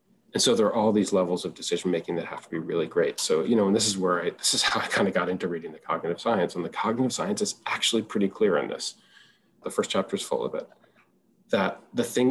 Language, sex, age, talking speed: English, male, 30-49, 270 wpm